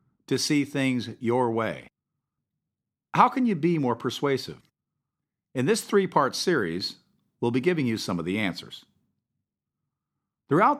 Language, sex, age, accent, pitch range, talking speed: English, male, 50-69, American, 110-155 Hz, 140 wpm